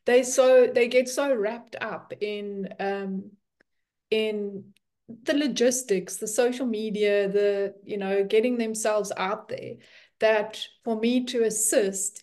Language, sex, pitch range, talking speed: English, female, 200-235 Hz, 130 wpm